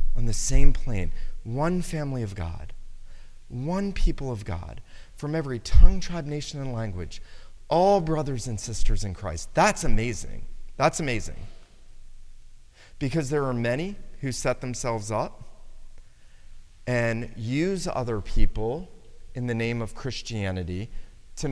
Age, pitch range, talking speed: 30-49, 105-140 Hz, 130 wpm